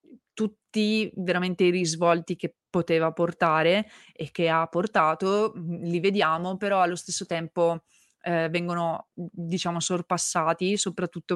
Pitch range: 170-195 Hz